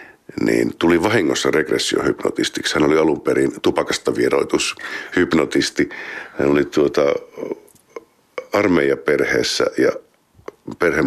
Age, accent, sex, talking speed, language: 50-69, native, male, 85 wpm, Finnish